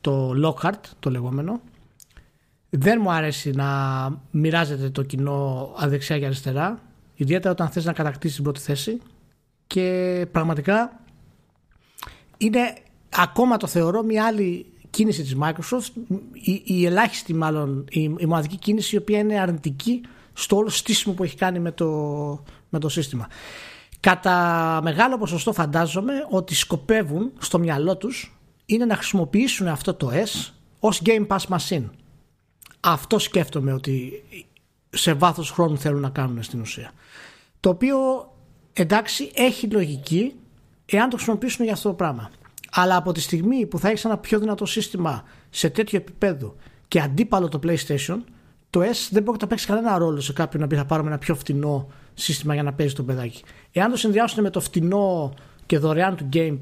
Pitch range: 150-210 Hz